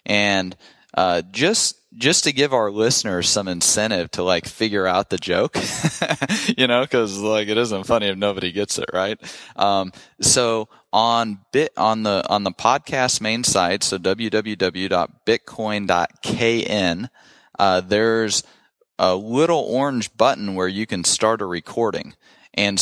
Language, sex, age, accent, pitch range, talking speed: English, male, 30-49, American, 95-115 Hz, 140 wpm